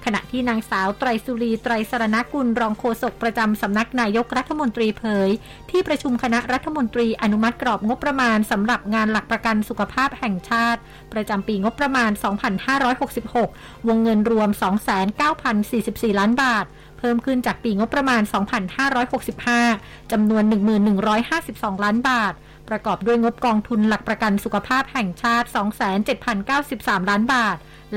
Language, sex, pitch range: Thai, female, 210-245 Hz